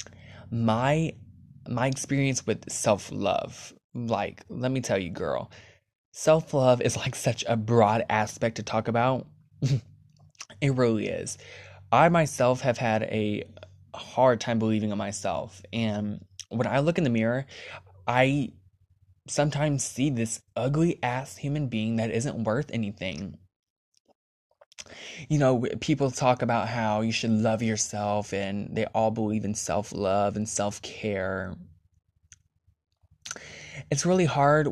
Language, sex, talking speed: English, male, 130 wpm